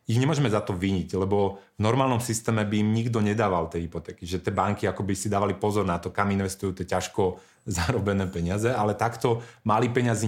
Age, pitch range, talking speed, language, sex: 30-49, 95-115 Hz, 200 wpm, Slovak, male